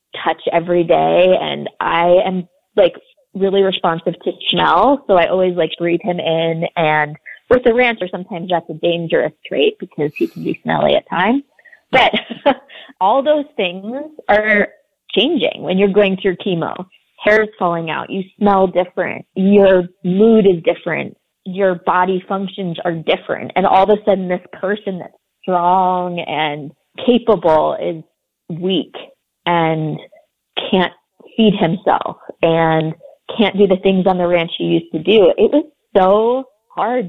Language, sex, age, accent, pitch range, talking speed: English, female, 20-39, American, 170-205 Hz, 155 wpm